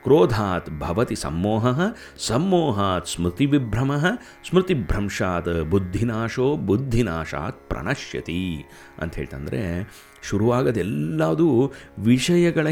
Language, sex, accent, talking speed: Kannada, male, native, 55 wpm